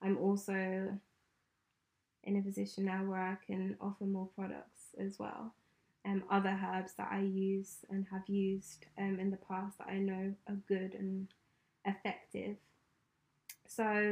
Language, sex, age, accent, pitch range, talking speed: English, female, 20-39, British, 195-230 Hz, 155 wpm